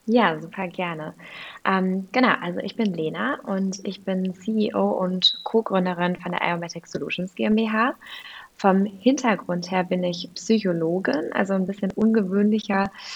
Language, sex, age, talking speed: German, female, 20-39, 135 wpm